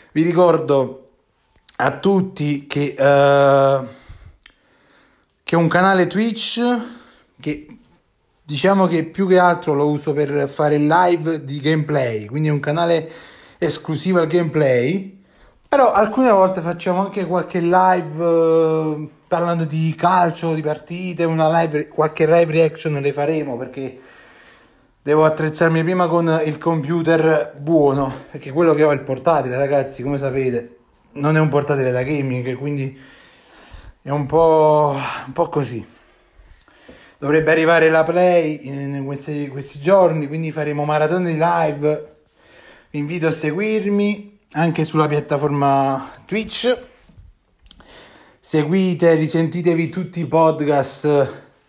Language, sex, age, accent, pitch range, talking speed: Italian, male, 30-49, native, 145-170 Hz, 120 wpm